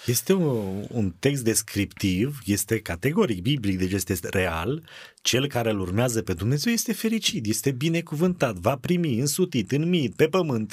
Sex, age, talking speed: male, 30-49, 150 wpm